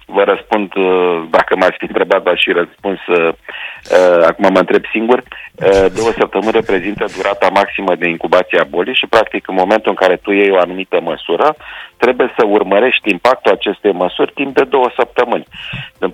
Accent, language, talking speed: native, Romanian, 165 wpm